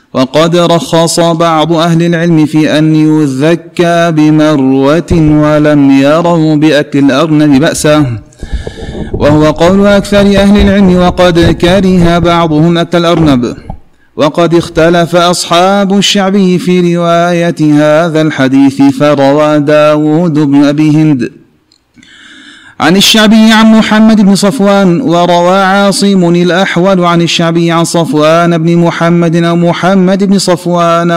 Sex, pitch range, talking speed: male, 140-175 Hz, 110 wpm